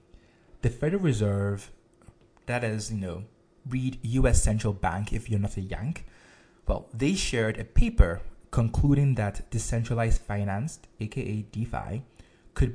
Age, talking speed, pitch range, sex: 20-39, 130 wpm, 100-120 Hz, male